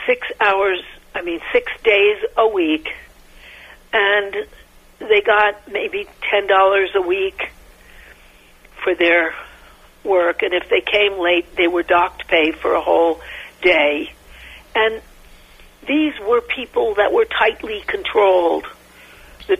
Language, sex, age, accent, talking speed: English, female, 60-79, American, 120 wpm